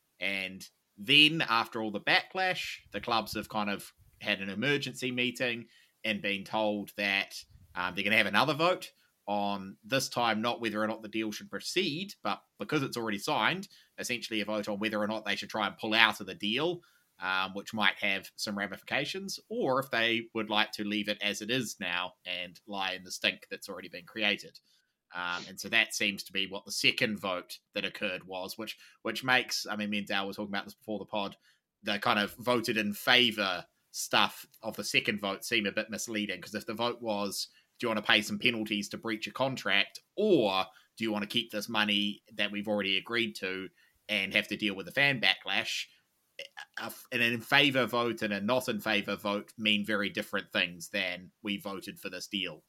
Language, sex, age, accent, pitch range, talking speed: English, male, 20-39, Australian, 100-120 Hz, 215 wpm